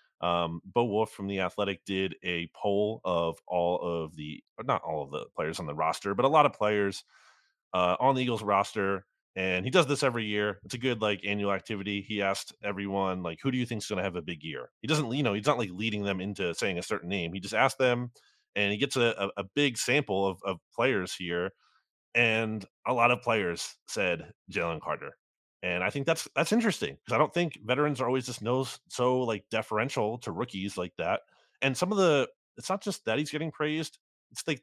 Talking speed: 230 wpm